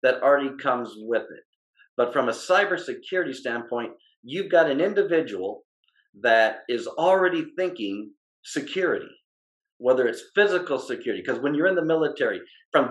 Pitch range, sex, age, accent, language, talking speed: 115-180 Hz, male, 50-69, American, English, 140 wpm